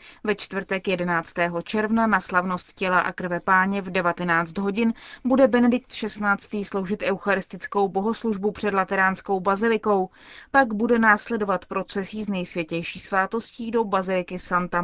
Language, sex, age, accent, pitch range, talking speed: Czech, female, 30-49, native, 185-225 Hz, 130 wpm